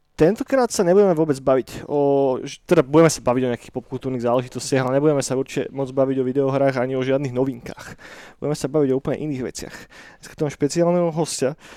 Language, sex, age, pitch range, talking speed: Slovak, male, 20-39, 135-155 Hz, 190 wpm